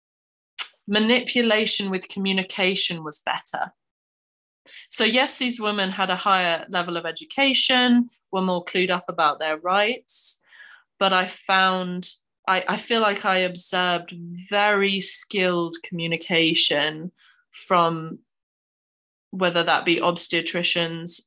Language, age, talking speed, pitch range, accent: English, 20-39, 110 wpm, 175-215 Hz, British